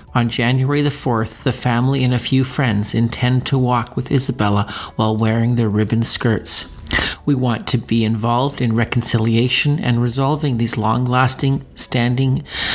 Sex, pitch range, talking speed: male, 110-130 Hz, 150 wpm